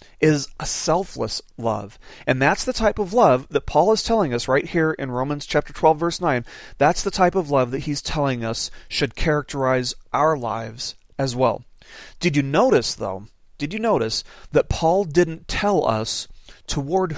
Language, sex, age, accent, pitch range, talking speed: English, male, 40-59, American, 125-175 Hz, 180 wpm